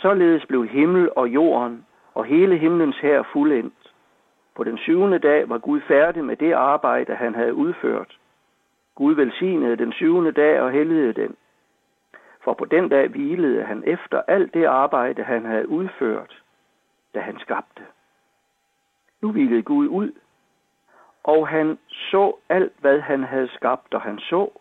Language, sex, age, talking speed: Danish, male, 60-79, 150 wpm